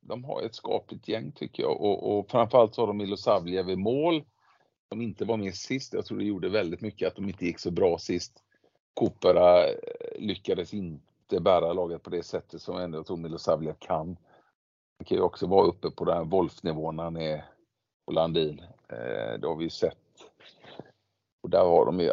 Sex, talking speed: male, 195 wpm